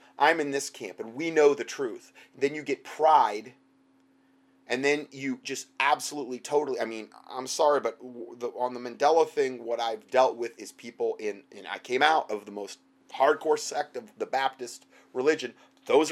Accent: American